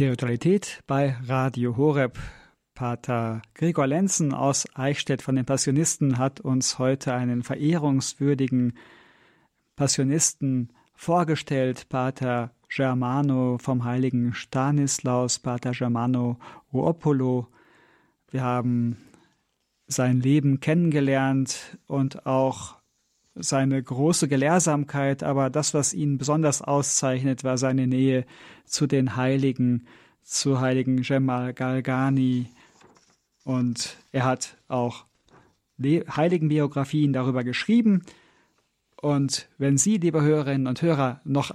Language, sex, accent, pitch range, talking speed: German, male, German, 130-145 Hz, 100 wpm